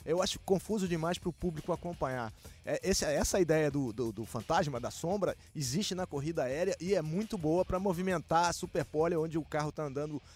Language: Portuguese